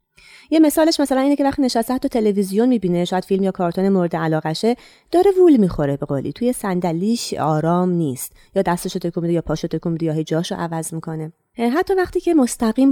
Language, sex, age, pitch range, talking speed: Persian, female, 30-49, 165-230 Hz, 175 wpm